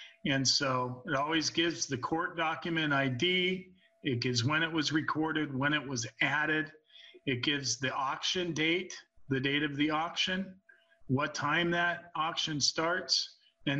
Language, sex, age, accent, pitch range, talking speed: English, male, 40-59, American, 130-165 Hz, 150 wpm